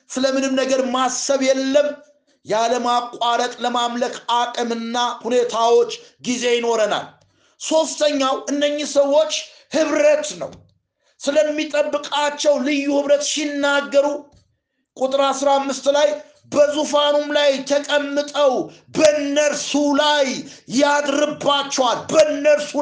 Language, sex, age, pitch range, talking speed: Amharic, male, 50-69, 245-285 Hz, 75 wpm